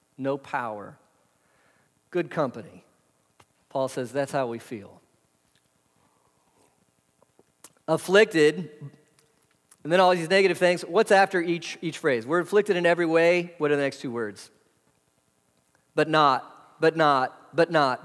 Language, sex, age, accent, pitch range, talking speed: English, male, 40-59, American, 120-180 Hz, 130 wpm